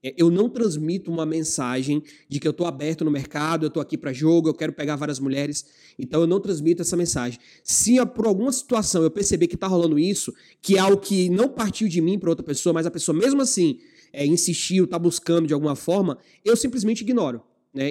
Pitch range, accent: 160-205 Hz, Brazilian